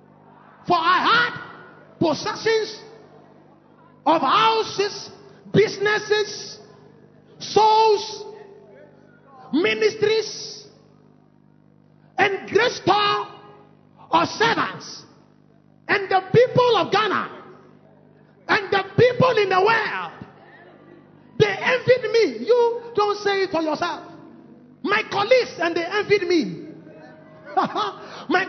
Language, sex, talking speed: English, male, 85 wpm